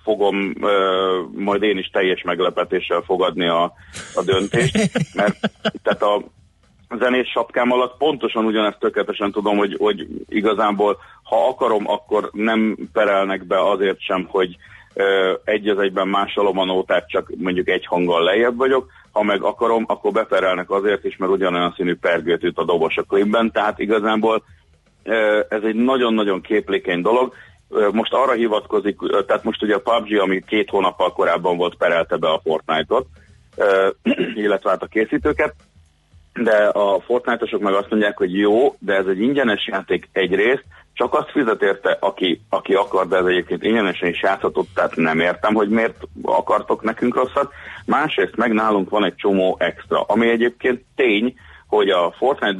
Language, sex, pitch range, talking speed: Hungarian, male, 95-110 Hz, 155 wpm